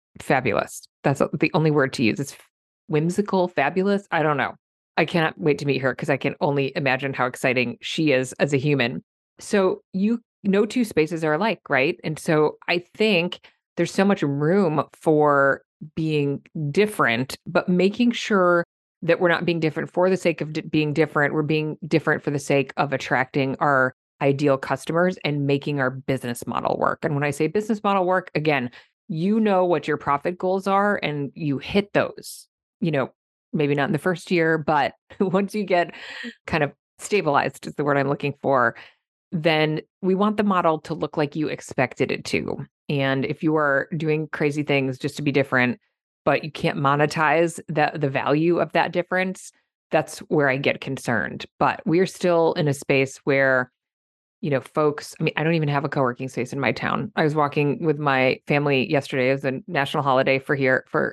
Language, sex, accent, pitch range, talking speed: English, female, American, 135-170 Hz, 190 wpm